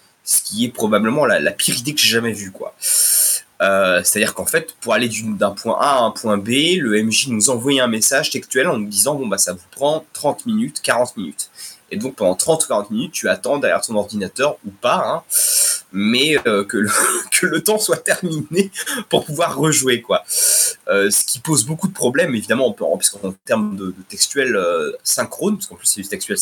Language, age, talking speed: French, 20-39, 215 wpm